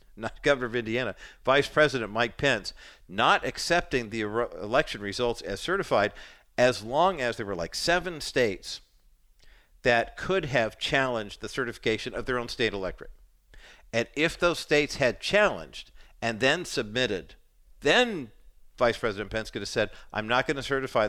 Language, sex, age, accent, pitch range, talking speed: English, male, 50-69, American, 110-160 Hz, 155 wpm